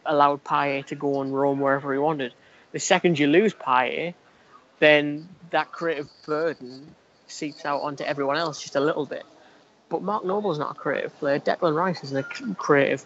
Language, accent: English, British